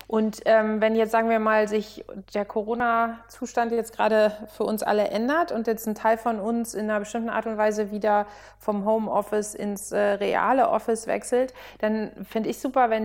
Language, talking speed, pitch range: German, 190 wpm, 210-230 Hz